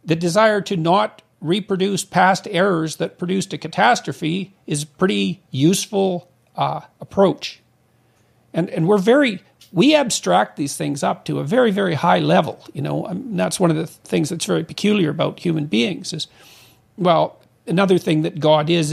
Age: 50-69